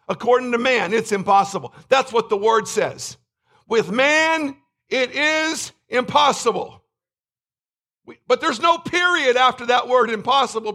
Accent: American